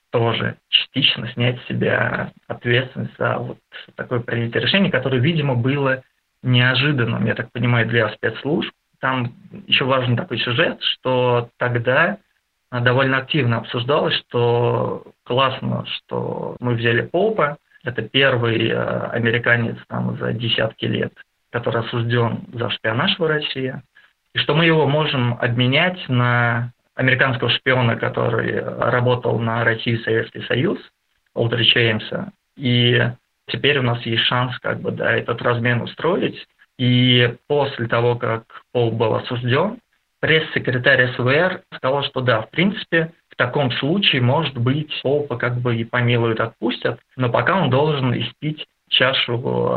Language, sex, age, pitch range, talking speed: Russian, male, 20-39, 120-135 Hz, 130 wpm